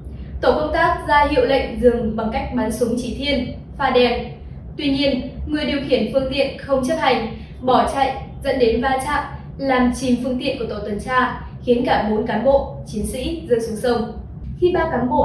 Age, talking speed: 10-29, 210 wpm